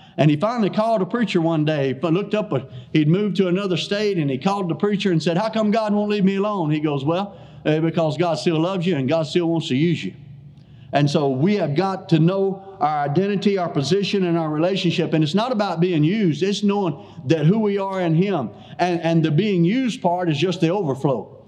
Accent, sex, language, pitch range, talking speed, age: American, male, English, 165-210 Hz, 235 wpm, 50-69